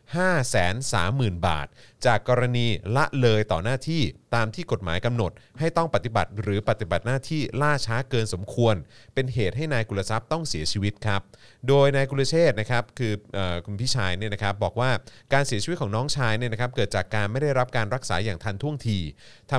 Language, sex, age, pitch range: Thai, male, 30-49, 105-135 Hz